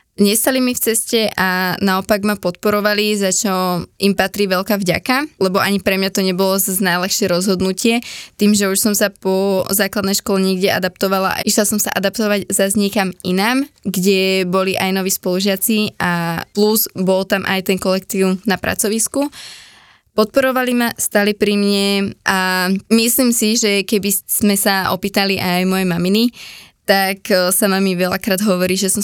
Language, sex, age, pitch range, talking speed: Slovak, female, 20-39, 190-210 Hz, 160 wpm